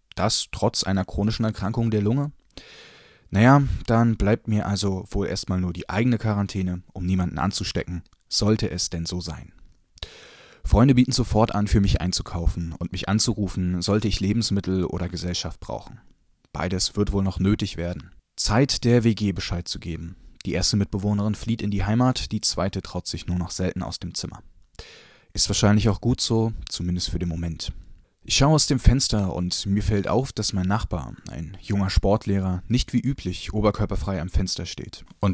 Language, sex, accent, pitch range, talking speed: German, male, German, 90-110 Hz, 175 wpm